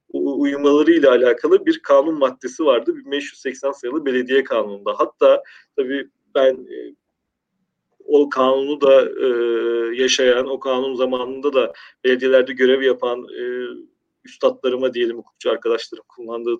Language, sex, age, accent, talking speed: Turkish, male, 40-59, native, 125 wpm